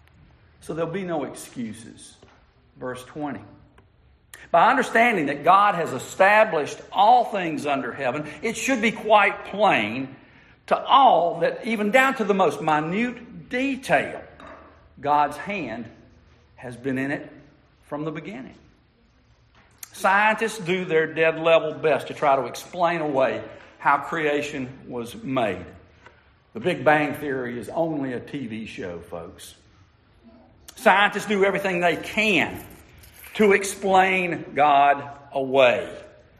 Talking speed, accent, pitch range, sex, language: 125 wpm, American, 140-210 Hz, male, English